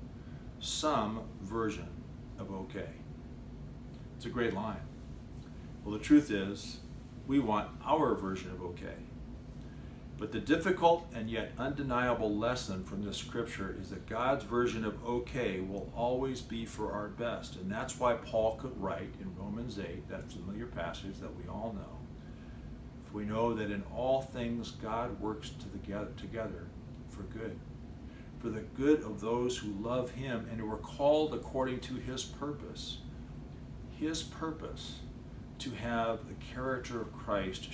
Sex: male